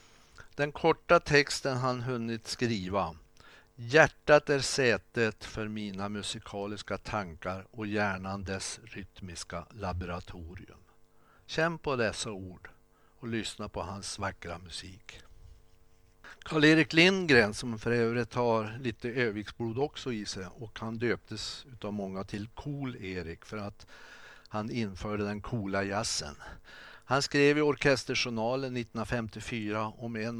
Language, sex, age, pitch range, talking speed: Swedish, male, 60-79, 100-130 Hz, 120 wpm